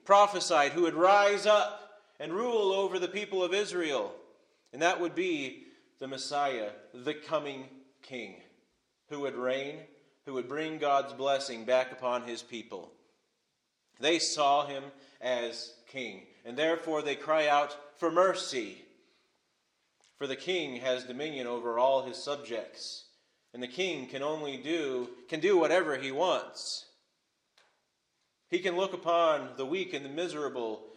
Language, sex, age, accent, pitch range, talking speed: English, male, 30-49, American, 130-170 Hz, 145 wpm